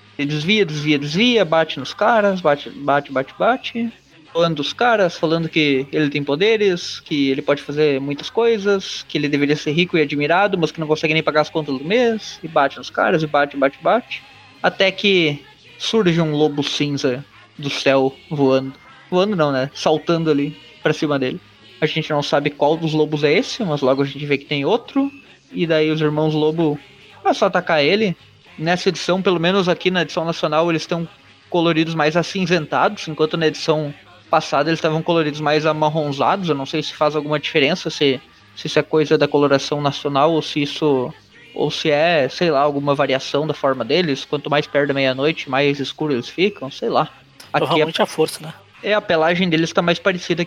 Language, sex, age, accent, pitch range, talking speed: Portuguese, male, 20-39, Brazilian, 145-170 Hz, 195 wpm